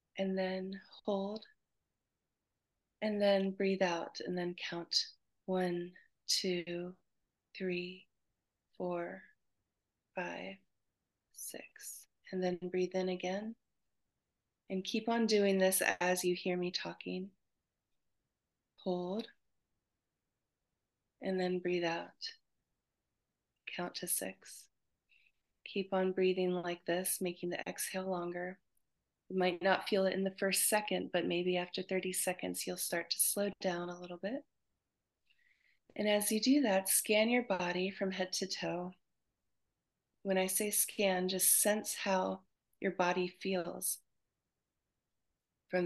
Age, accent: 30-49, American